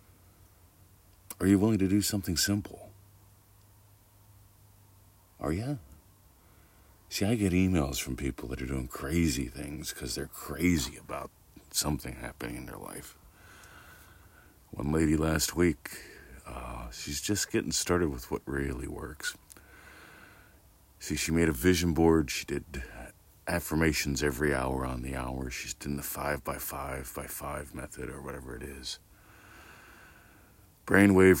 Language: English